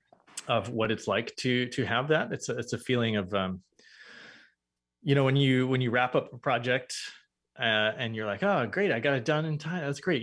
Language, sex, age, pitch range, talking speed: English, male, 20-39, 110-140 Hz, 230 wpm